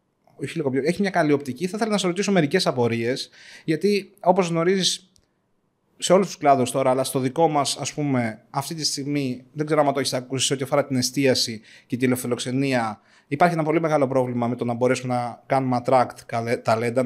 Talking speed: 185 wpm